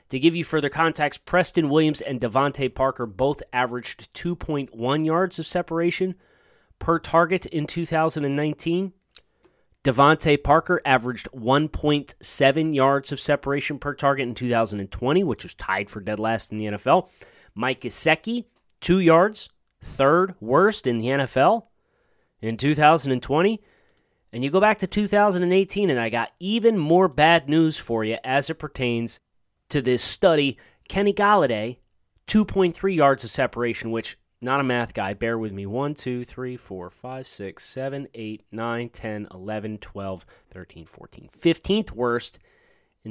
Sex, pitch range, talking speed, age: male, 120-180 Hz, 145 wpm, 30-49